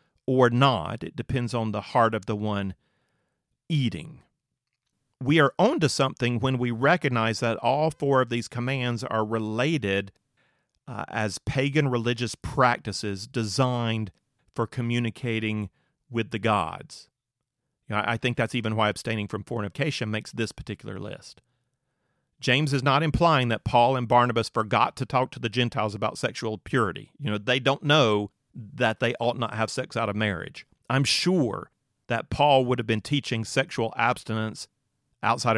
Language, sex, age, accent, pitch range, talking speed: English, male, 40-59, American, 110-135 Hz, 155 wpm